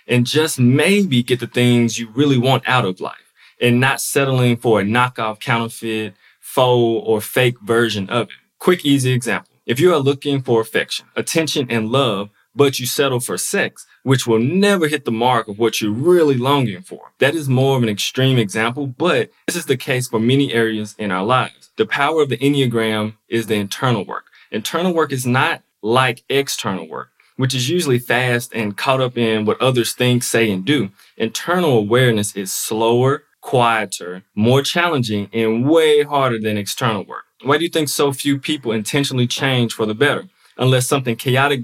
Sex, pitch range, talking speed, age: male, 115-140 Hz, 185 wpm, 20-39